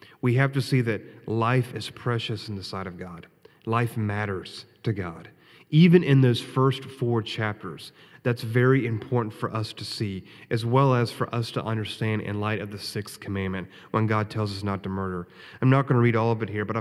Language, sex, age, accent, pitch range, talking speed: English, male, 30-49, American, 105-125 Hz, 215 wpm